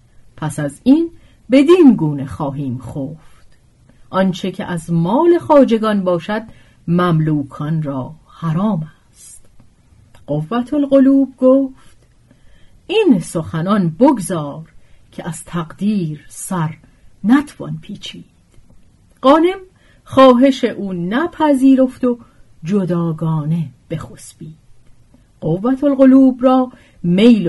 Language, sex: Persian, female